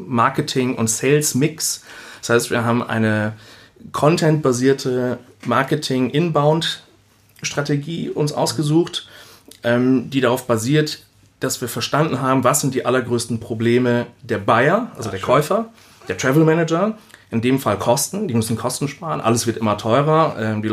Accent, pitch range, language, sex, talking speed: German, 110-140 Hz, German, male, 135 wpm